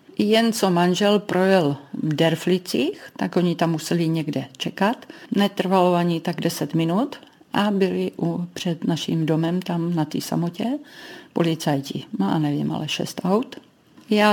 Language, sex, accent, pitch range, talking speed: Czech, female, native, 165-200 Hz, 145 wpm